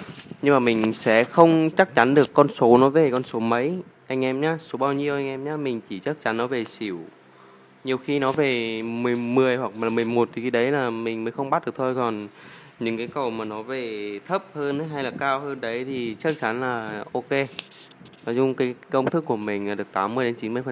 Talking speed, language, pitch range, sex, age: 240 wpm, Vietnamese, 110-130 Hz, male, 20-39